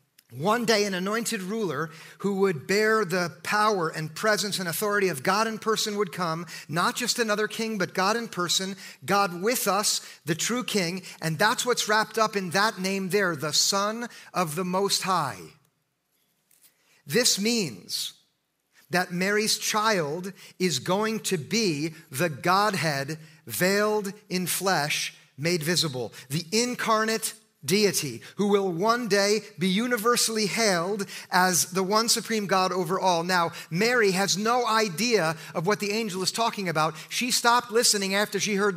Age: 40-59